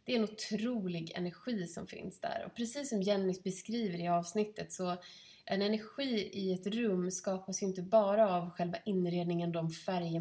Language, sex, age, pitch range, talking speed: Swedish, female, 20-39, 180-220 Hz, 170 wpm